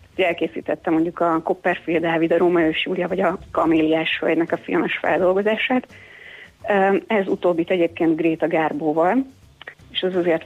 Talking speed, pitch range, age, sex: 125 wpm, 165-195 Hz, 30-49, female